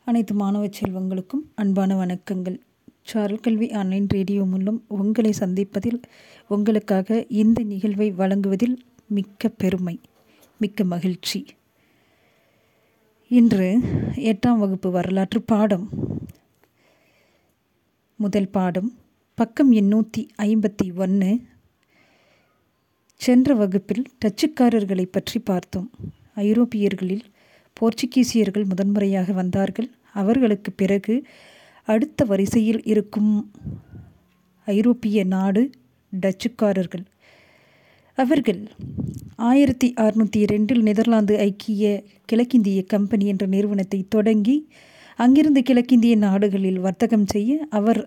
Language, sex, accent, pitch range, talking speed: Tamil, female, native, 200-235 Hz, 80 wpm